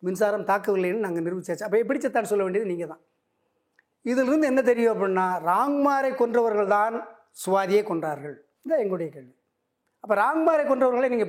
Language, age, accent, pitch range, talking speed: Tamil, 30-49, native, 185-245 Hz, 140 wpm